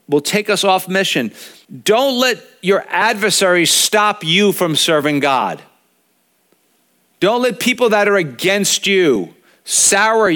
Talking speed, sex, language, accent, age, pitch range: 125 wpm, male, English, American, 50-69, 160-205 Hz